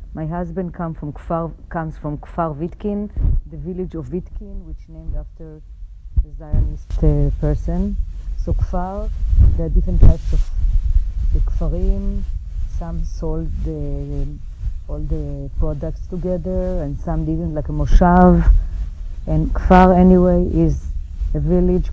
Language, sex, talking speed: English, female, 135 wpm